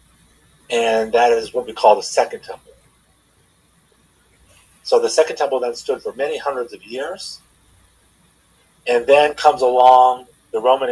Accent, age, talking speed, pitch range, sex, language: American, 40-59, 145 wpm, 110-155 Hz, male, English